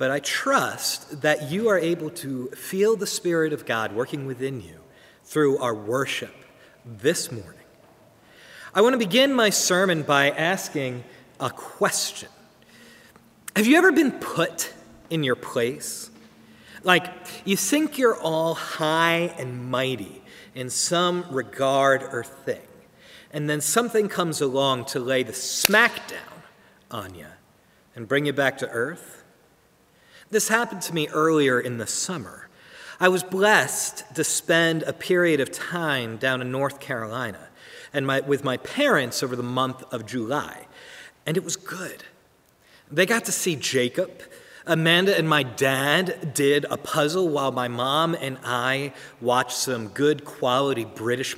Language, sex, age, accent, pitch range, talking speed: English, male, 40-59, American, 130-180 Hz, 150 wpm